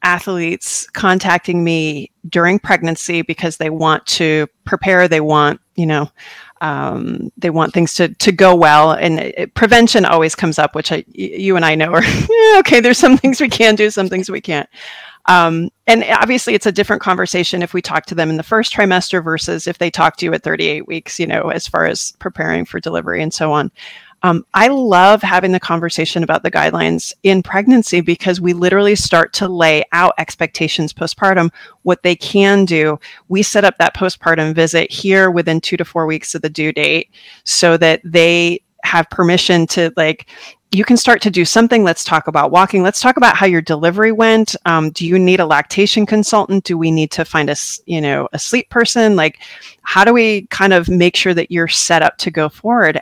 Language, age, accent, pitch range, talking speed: English, 40-59, American, 165-210 Hz, 200 wpm